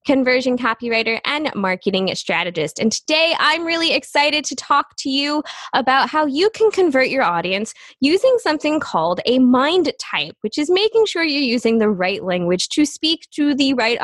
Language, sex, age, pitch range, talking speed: English, female, 20-39, 215-285 Hz, 175 wpm